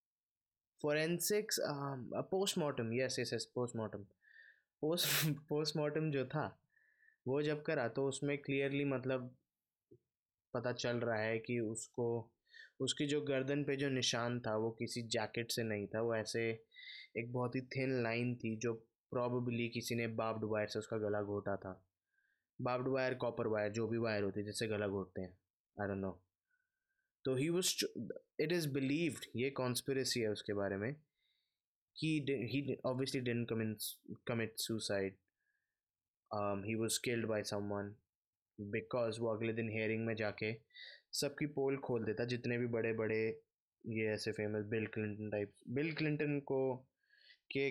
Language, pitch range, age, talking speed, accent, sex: Hindi, 110-140 Hz, 20-39, 140 wpm, native, male